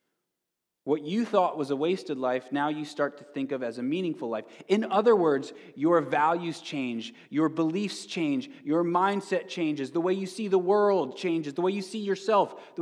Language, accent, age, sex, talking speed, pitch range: English, American, 20-39, male, 195 wpm, 160-215 Hz